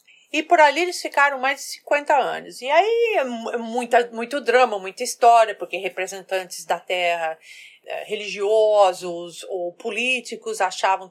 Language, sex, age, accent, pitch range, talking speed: Portuguese, female, 40-59, Brazilian, 190-265 Hz, 130 wpm